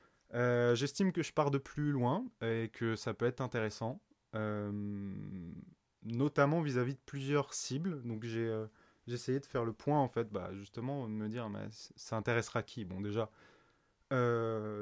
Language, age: French, 20-39